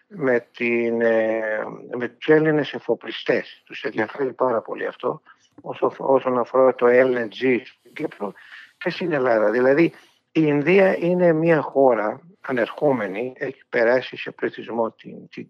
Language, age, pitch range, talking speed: Greek, 60-79, 115-150 Hz, 125 wpm